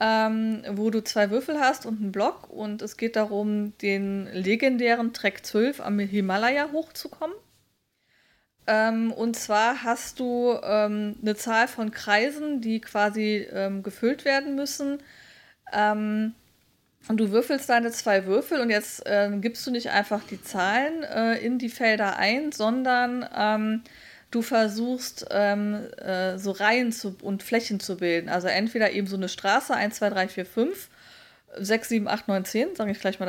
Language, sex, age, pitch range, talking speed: German, female, 20-39, 205-245 Hz, 160 wpm